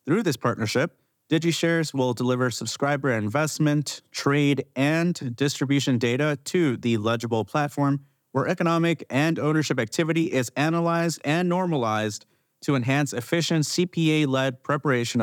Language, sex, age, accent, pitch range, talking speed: English, male, 30-49, American, 115-150 Hz, 120 wpm